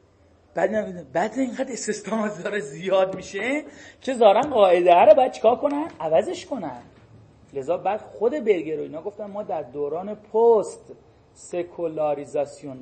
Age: 40-59